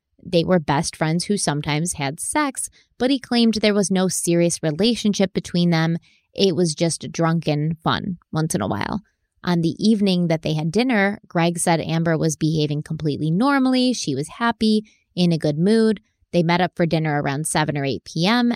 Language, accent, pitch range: English, American, 155-200 Hz